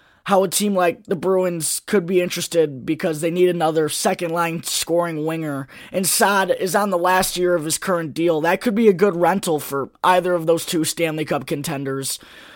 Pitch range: 165-205 Hz